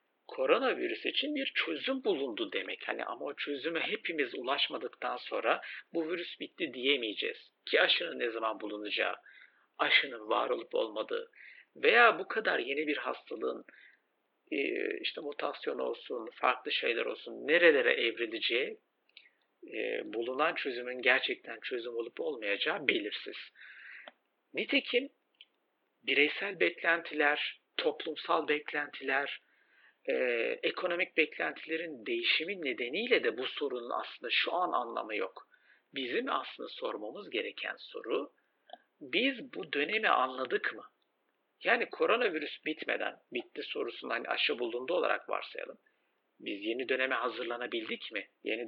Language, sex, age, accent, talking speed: Turkish, male, 60-79, native, 110 wpm